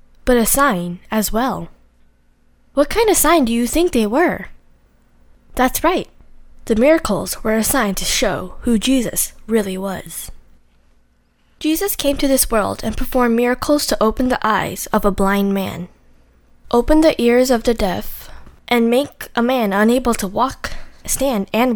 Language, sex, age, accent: Korean, female, 10-29, American